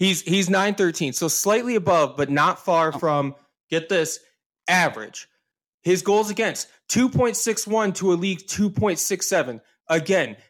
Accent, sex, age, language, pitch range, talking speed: American, male, 20-39, English, 170-225 Hz, 130 wpm